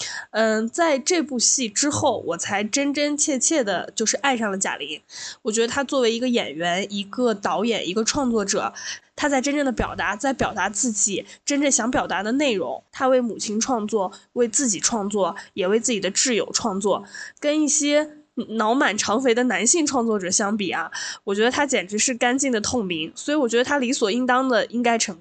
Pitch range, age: 210-275 Hz, 10-29